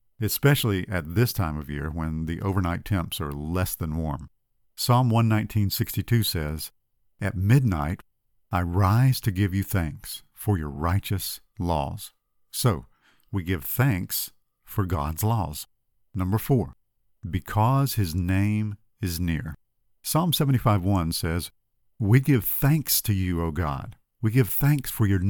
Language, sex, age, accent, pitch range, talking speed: English, male, 50-69, American, 90-125 Hz, 140 wpm